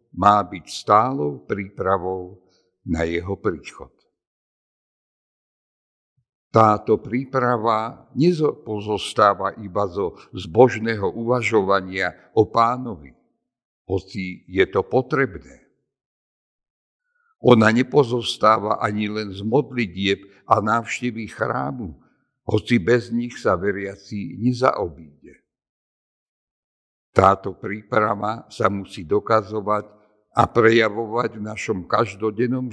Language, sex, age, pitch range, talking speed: Slovak, male, 60-79, 95-120 Hz, 85 wpm